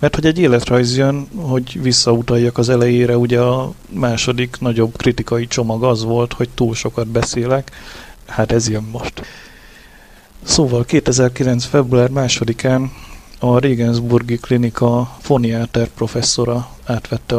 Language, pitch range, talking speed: Hungarian, 115-130 Hz, 120 wpm